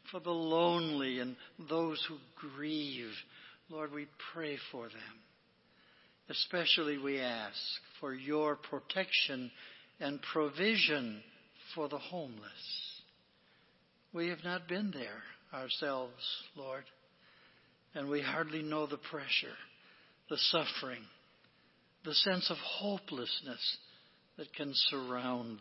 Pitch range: 135-170 Hz